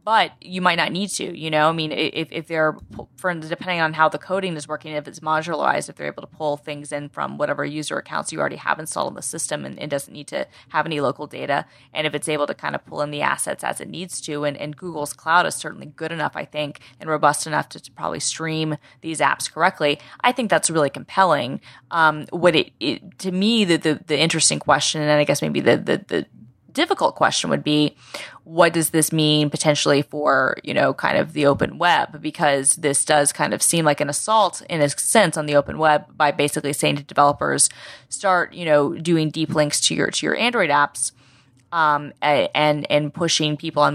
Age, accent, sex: 20-39, American, female